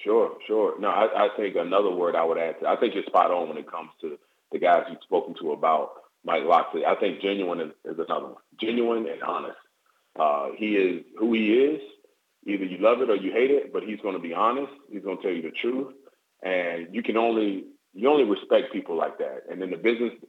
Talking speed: 235 wpm